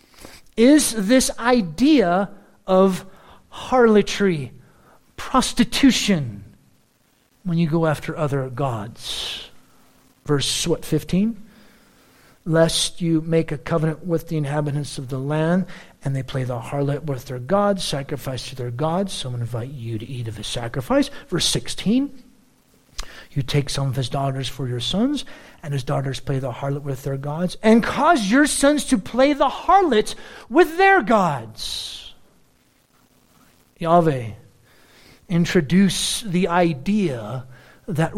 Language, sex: English, male